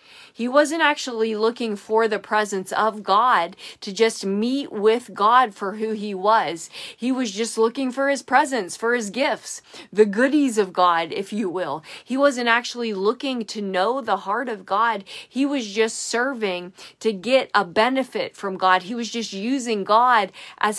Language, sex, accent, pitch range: English, female, American, 200-245 Hz